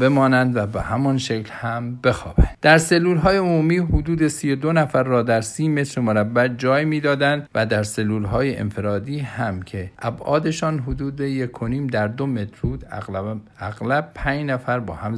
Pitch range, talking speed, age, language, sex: 100-130 Hz, 160 wpm, 50-69, Persian, male